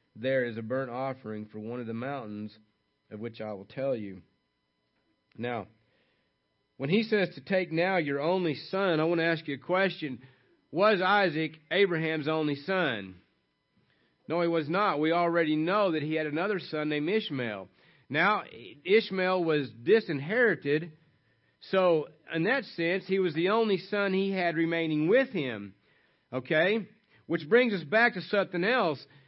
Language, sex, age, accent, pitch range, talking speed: English, male, 40-59, American, 145-195 Hz, 160 wpm